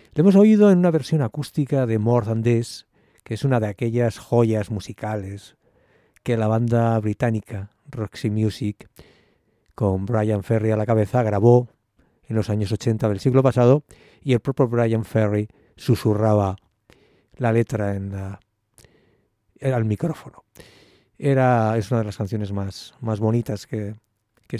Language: English